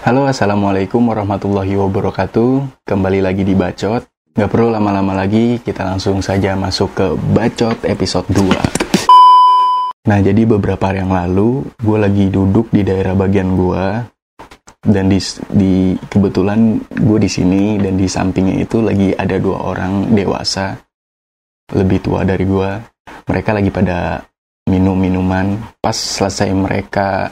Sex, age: male, 20-39